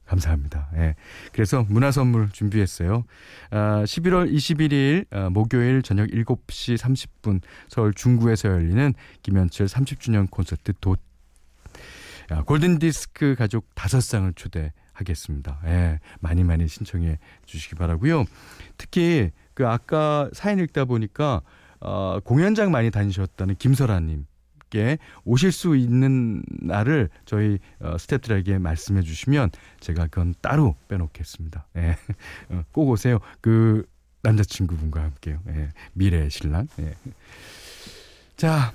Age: 40-59